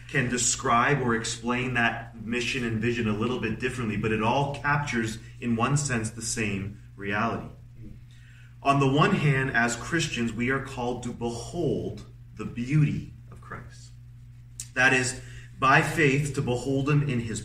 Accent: American